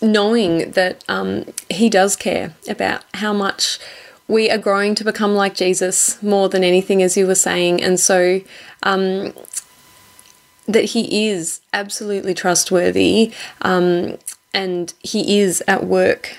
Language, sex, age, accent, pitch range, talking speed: English, female, 20-39, Australian, 180-200 Hz, 135 wpm